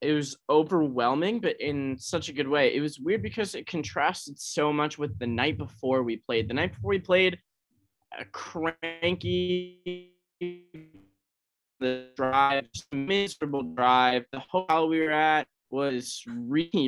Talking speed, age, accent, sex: 145 wpm, 20-39, American, male